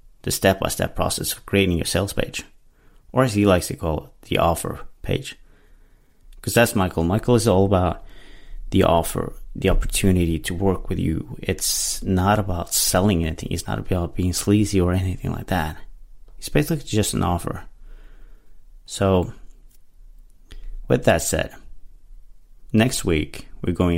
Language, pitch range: English, 85-110 Hz